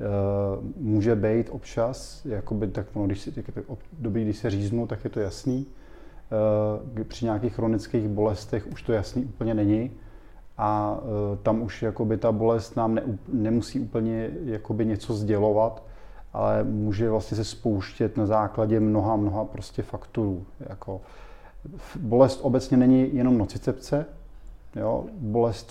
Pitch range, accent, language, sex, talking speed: 105-115 Hz, native, Czech, male, 140 wpm